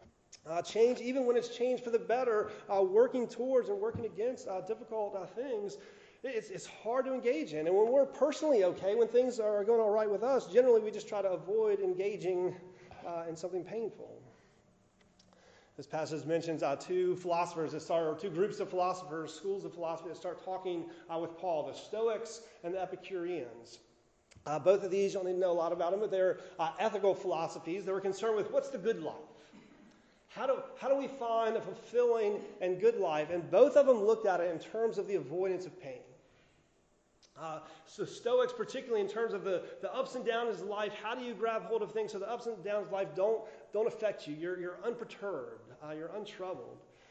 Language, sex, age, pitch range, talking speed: English, male, 30-49, 165-235 Hz, 210 wpm